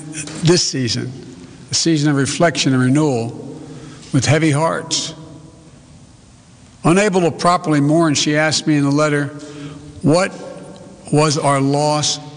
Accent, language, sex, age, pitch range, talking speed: American, English, male, 60-79, 125-145 Hz, 120 wpm